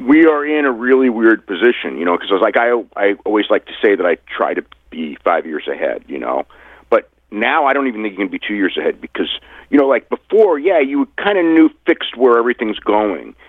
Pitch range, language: 105-180 Hz, English